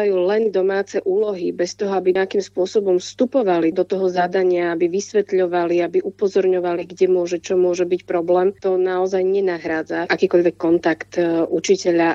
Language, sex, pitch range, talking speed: Slovak, female, 180-220 Hz, 140 wpm